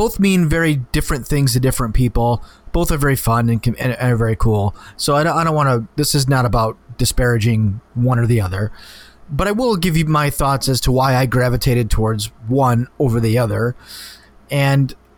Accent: American